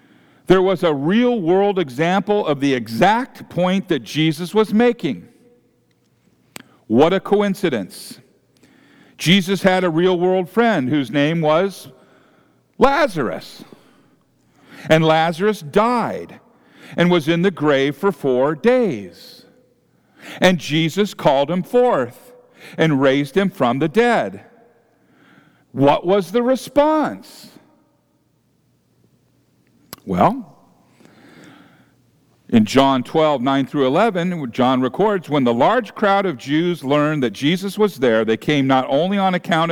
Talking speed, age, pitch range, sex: 115 wpm, 50-69, 150-210 Hz, male